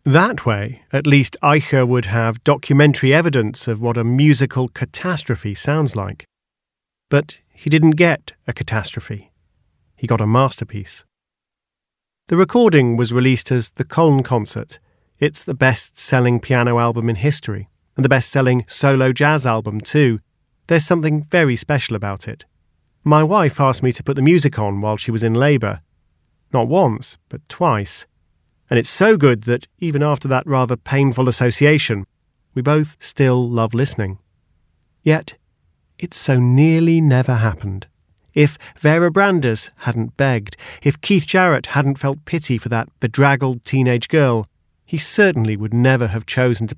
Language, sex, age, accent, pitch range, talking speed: English, male, 40-59, British, 115-145 Hz, 150 wpm